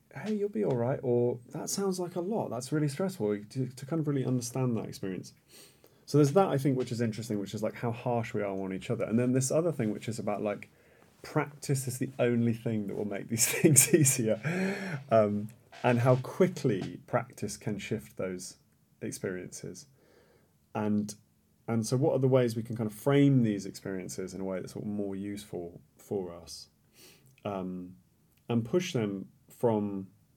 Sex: male